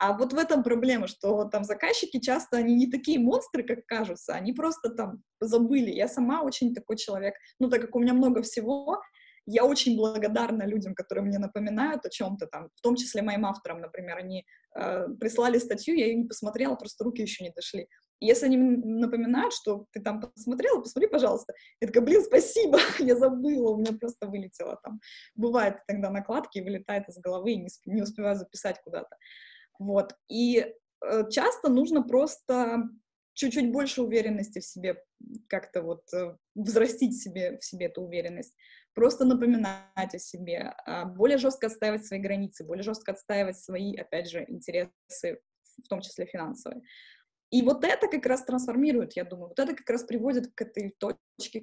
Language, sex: Russian, female